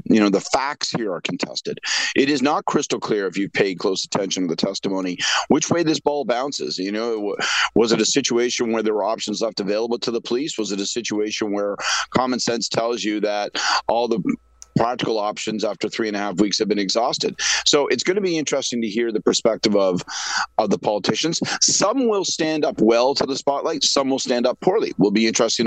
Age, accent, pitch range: 40-59, American, 105-125 Hz